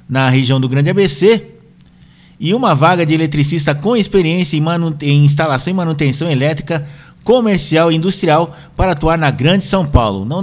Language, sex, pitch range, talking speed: Portuguese, male, 140-175 Hz, 160 wpm